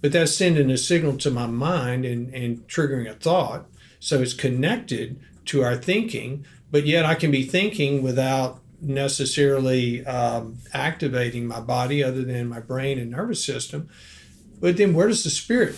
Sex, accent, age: male, American, 50-69